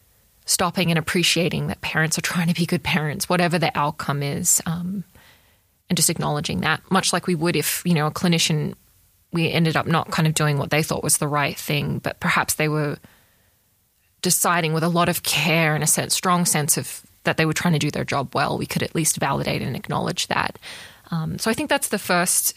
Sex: female